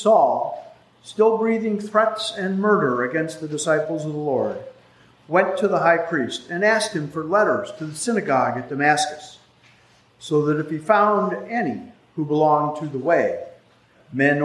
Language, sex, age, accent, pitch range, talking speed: English, male, 50-69, American, 155-215 Hz, 160 wpm